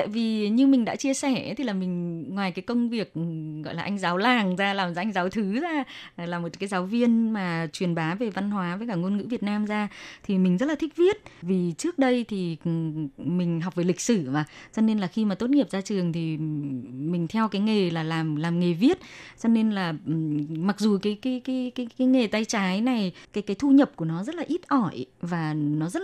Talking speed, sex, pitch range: 240 wpm, female, 180-250 Hz